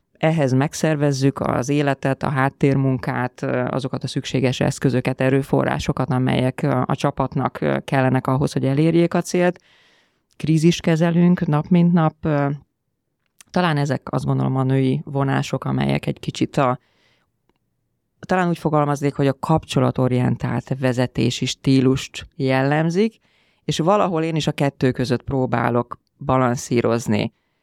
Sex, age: female, 20-39